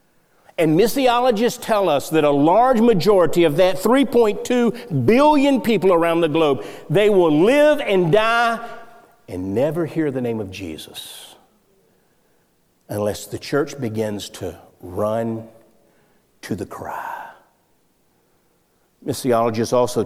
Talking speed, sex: 115 wpm, male